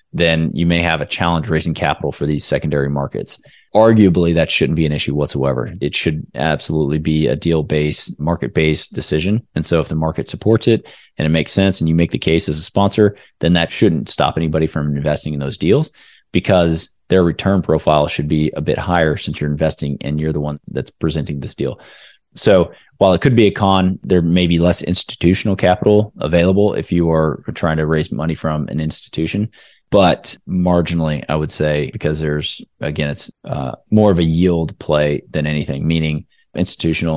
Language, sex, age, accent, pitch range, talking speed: English, male, 20-39, American, 75-90 Hz, 190 wpm